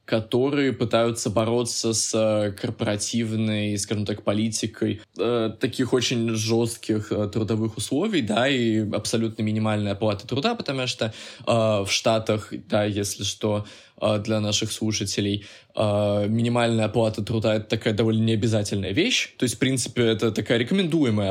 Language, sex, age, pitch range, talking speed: Russian, male, 20-39, 105-120 Hz, 145 wpm